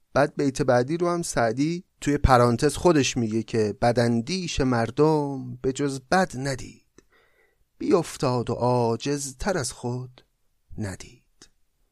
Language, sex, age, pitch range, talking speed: Persian, male, 30-49, 125-175 Hz, 120 wpm